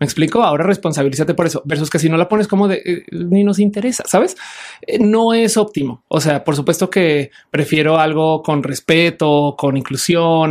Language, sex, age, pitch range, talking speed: Spanish, male, 30-49, 155-210 Hz, 195 wpm